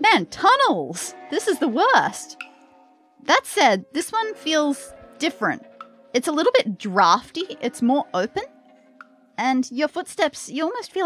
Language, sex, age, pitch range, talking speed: English, female, 30-49, 205-290 Hz, 140 wpm